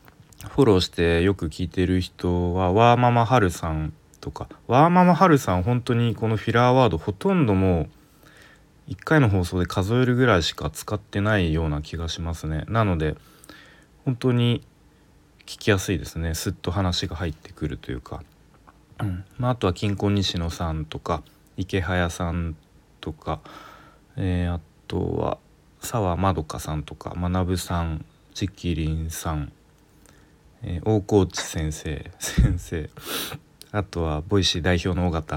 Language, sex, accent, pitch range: Japanese, male, native, 80-110 Hz